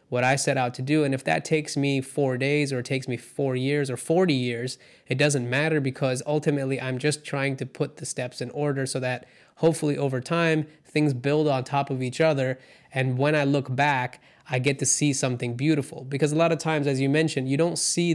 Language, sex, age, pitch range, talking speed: English, male, 20-39, 125-145 Hz, 230 wpm